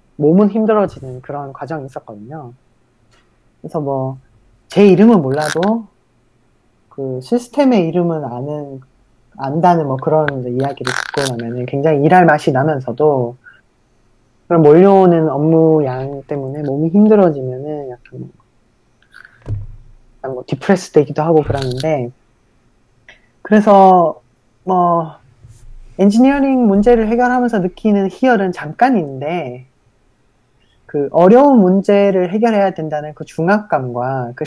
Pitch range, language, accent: 130-200 Hz, Korean, native